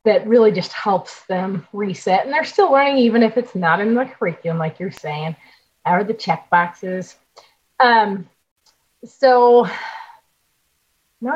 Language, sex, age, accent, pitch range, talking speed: English, female, 30-49, American, 195-270 Hz, 145 wpm